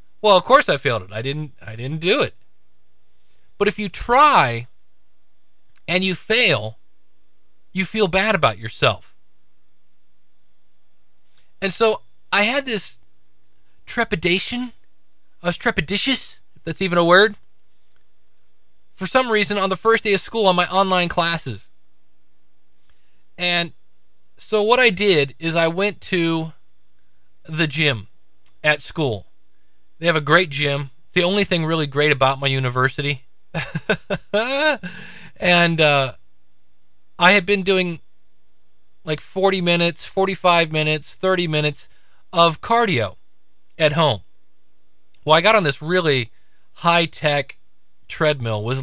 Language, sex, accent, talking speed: English, male, American, 130 wpm